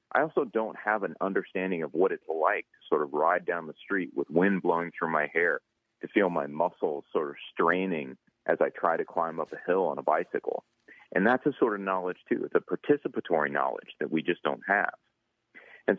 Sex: male